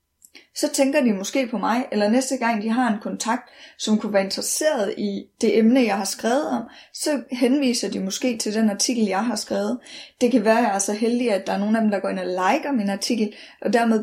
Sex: female